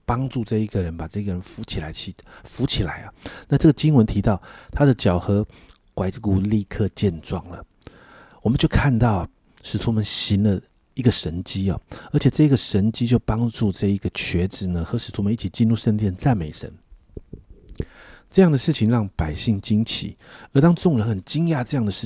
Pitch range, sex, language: 95-120 Hz, male, Chinese